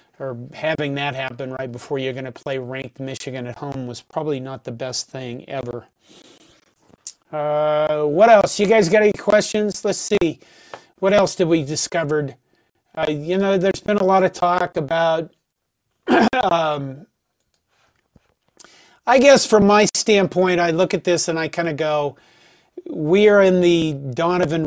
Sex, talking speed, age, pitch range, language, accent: male, 160 wpm, 40-59, 140-175 Hz, English, American